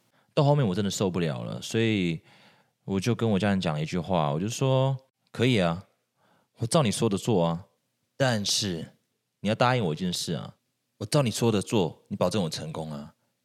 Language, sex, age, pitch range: Chinese, male, 30-49, 85-125 Hz